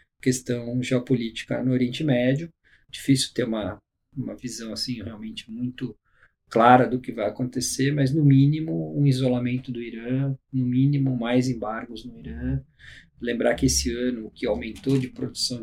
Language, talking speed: Portuguese, 155 wpm